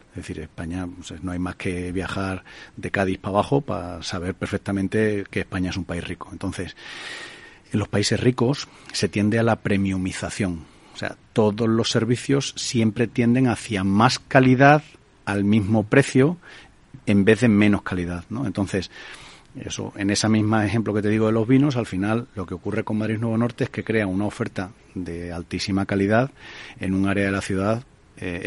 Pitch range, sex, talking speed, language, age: 95-115 Hz, male, 180 wpm, Spanish, 40-59